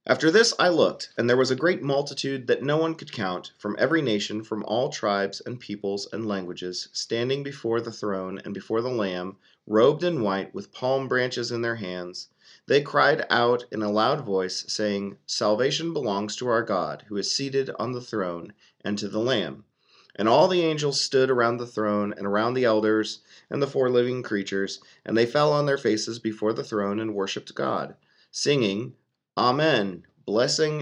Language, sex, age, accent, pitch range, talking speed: English, male, 40-59, American, 100-130 Hz, 190 wpm